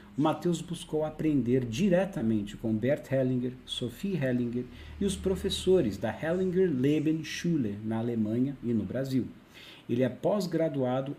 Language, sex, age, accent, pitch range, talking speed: English, male, 50-69, Brazilian, 125-170 Hz, 120 wpm